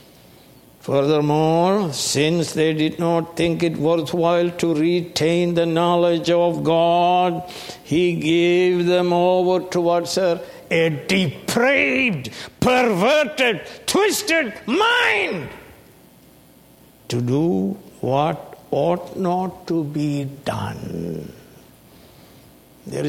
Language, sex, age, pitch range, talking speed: English, male, 60-79, 140-180 Hz, 90 wpm